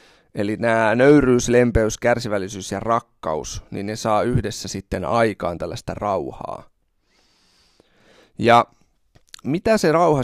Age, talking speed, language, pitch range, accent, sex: 30-49, 110 wpm, Finnish, 100-125 Hz, native, male